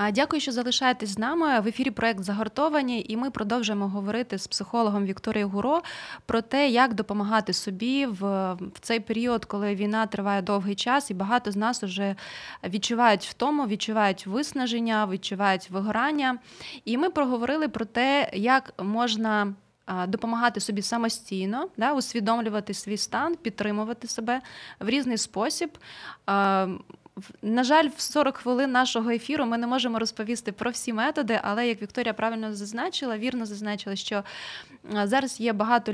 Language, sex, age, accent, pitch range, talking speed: Ukrainian, female, 20-39, native, 205-245 Hz, 140 wpm